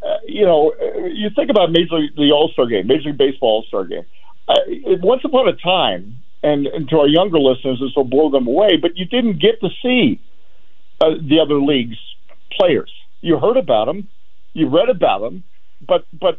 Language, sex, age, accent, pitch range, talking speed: English, male, 50-69, American, 145-230 Hz, 190 wpm